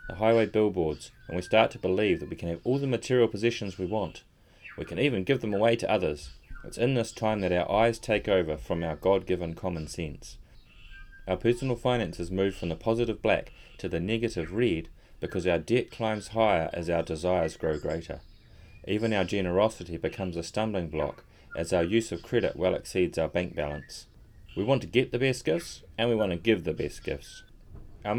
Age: 30-49